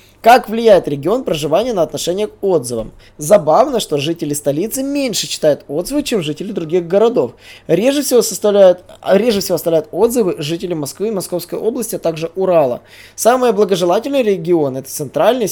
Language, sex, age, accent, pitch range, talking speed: Russian, male, 20-39, native, 150-215 Hz, 140 wpm